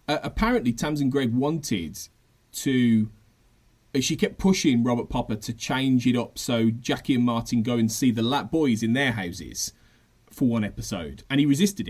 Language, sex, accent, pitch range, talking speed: English, male, British, 120-170 Hz, 170 wpm